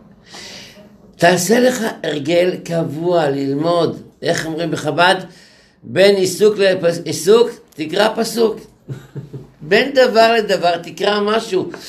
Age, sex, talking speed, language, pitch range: 60-79, male, 95 wpm, Hebrew, 145-185 Hz